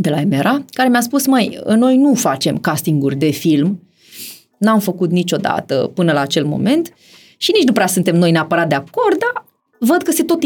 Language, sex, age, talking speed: Romanian, female, 20-39, 195 wpm